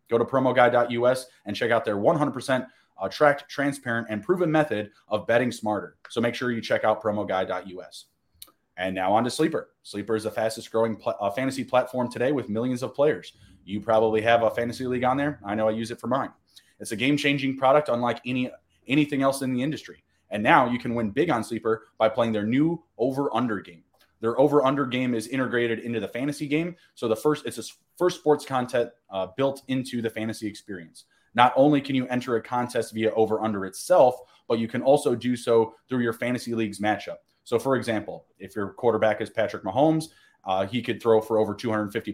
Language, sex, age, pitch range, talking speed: English, male, 20-39, 110-130 Hz, 200 wpm